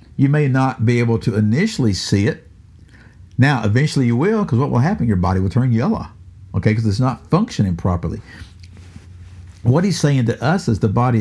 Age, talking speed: 60-79, 195 wpm